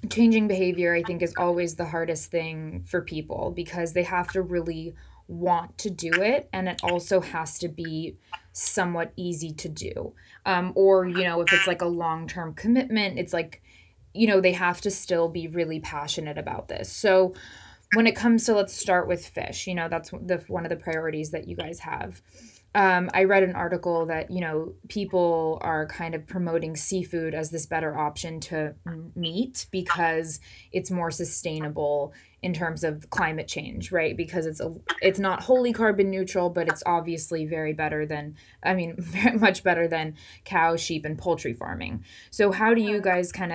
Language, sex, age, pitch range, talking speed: English, female, 20-39, 160-185 Hz, 185 wpm